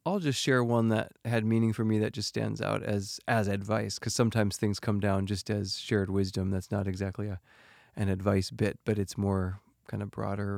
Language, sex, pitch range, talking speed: English, male, 100-120 Hz, 210 wpm